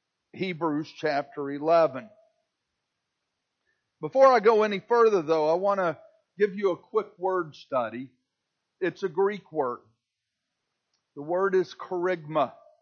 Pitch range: 155-215 Hz